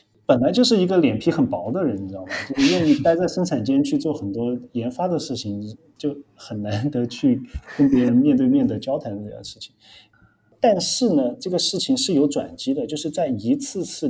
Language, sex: Chinese, male